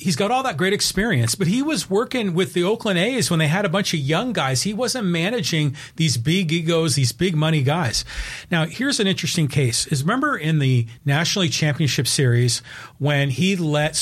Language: English